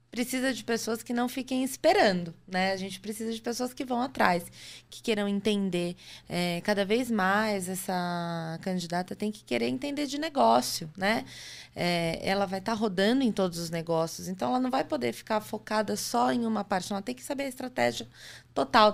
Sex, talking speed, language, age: female, 190 wpm, Portuguese, 20-39